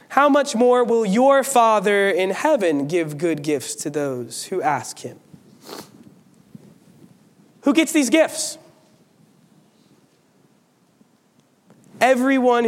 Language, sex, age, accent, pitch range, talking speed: English, male, 30-49, American, 175-225 Hz, 100 wpm